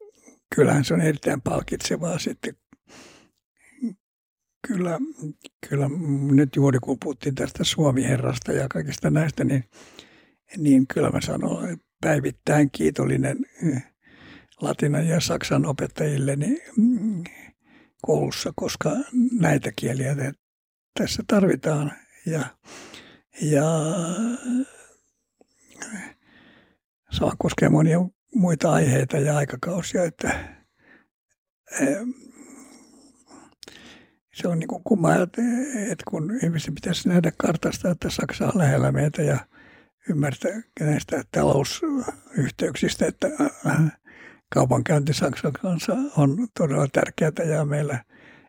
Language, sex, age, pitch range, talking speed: Finnish, male, 60-79, 145-240 Hz, 90 wpm